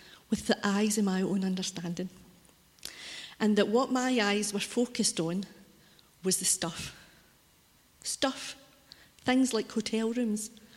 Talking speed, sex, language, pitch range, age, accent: 130 wpm, female, English, 195-225 Hz, 40-59, British